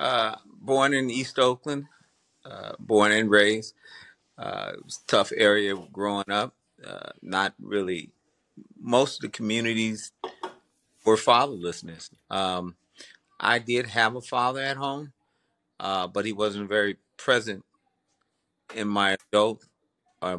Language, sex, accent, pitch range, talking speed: English, male, American, 95-110 Hz, 120 wpm